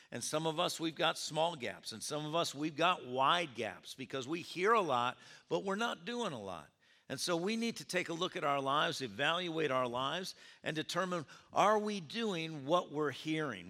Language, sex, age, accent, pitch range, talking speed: English, male, 50-69, American, 140-180 Hz, 215 wpm